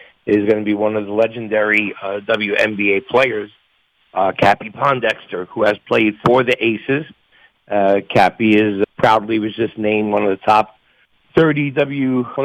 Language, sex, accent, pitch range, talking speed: English, male, American, 105-120 Hz, 170 wpm